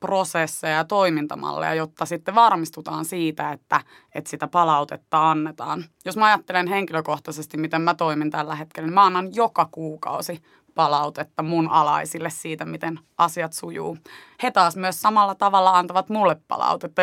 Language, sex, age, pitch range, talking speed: Finnish, female, 20-39, 155-180 Hz, 145 wpm